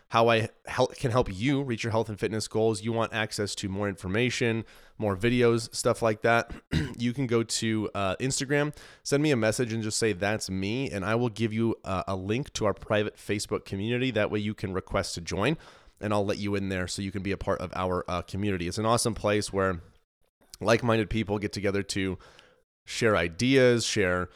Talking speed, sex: 210 wpm, male